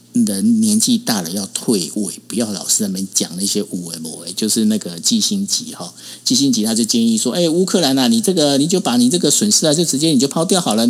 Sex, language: male, Chinese